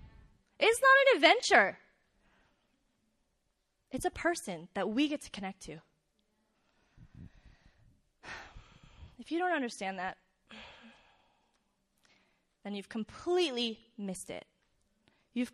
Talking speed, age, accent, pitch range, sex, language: 95 wpm, 20-39, American, 200-300 Hz, female, English